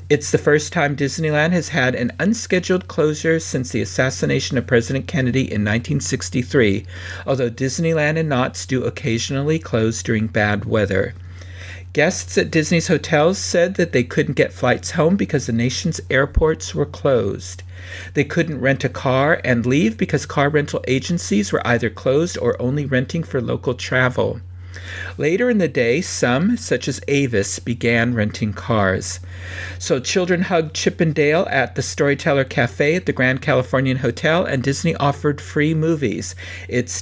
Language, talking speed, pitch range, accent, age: English, 155 wpm, 105-150 Hz, American, 50-69